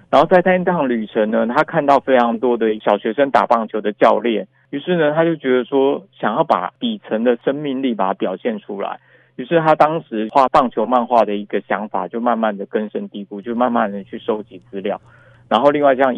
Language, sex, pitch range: Chinese, male, 110-135 Hz